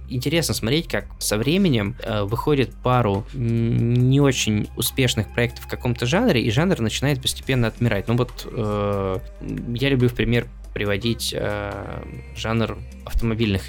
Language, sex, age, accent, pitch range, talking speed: Russian, male, 20-39, native, 100-120 Hz, 135 wpm